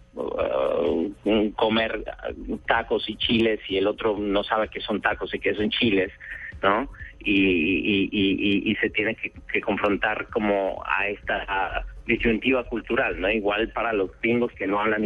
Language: Spanish